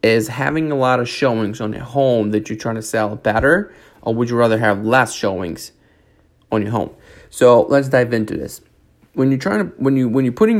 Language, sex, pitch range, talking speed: English, male, 110-135 Hz, 220 wpm